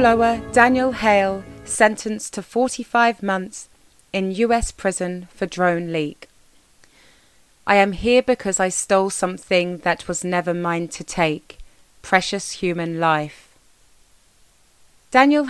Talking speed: 115 wpm